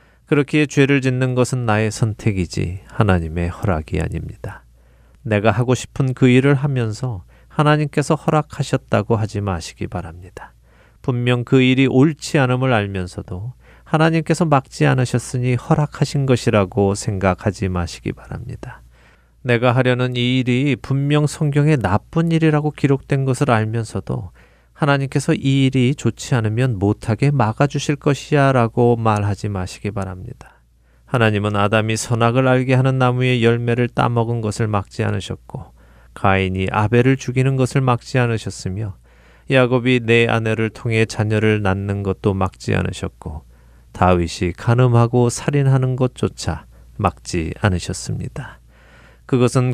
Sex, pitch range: male, 100-130 Hz